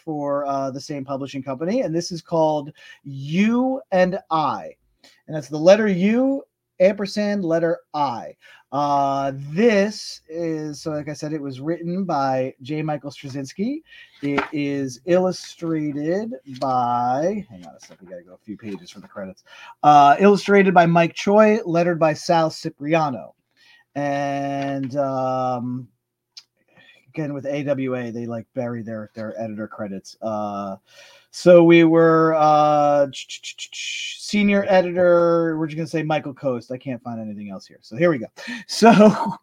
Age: 40-59